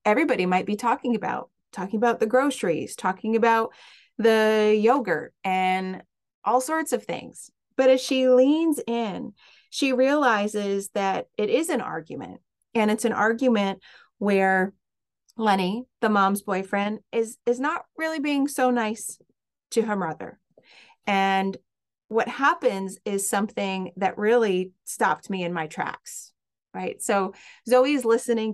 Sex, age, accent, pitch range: female, 30-49, American, 195-260 Hz